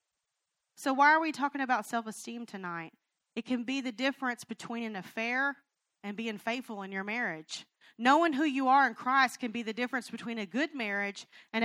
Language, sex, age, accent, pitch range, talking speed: English, female, 40-59, American, 215-270 Hz, 190 wpm